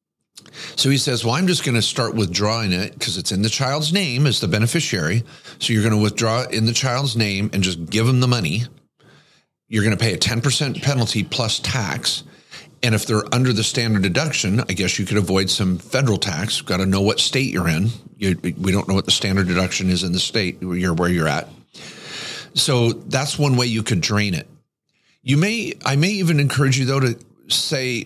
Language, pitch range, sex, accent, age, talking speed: English, 105-140 Hz, male, American, 40-59, 210 wpm